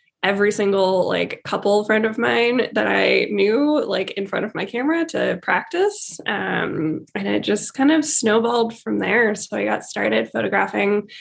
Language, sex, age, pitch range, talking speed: English, female, 10-29, 195-275 Hz, 170 wpm